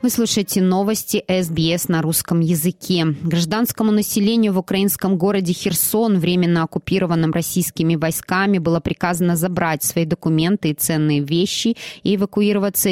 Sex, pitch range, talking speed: female, 160-190 Hz, 125 wpm